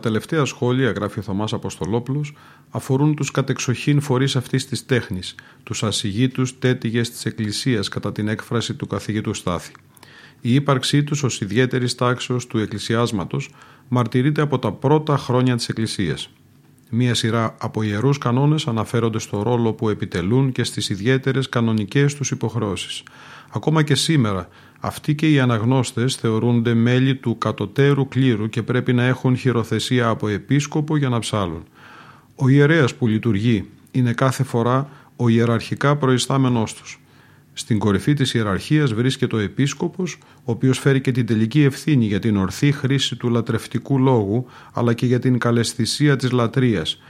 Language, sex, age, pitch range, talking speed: Greek, male, 40-59, 110-135 Hz, 150 wpm